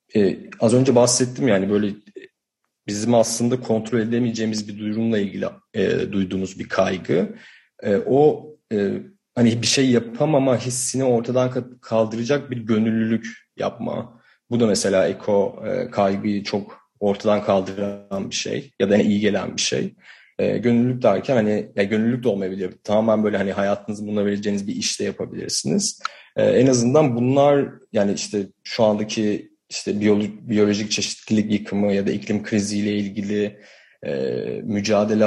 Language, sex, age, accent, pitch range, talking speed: Turkish, male, 40-59, native, 100-125 Hz, 145 wpm